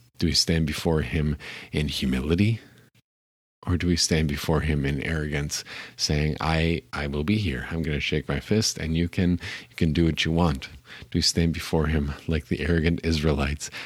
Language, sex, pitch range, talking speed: English, male, 75-85 Hz, 195 wpm